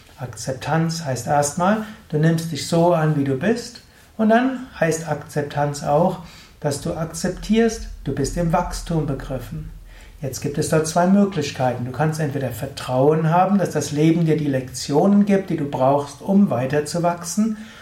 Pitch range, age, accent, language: 140-185 Hz, 60-79, German, German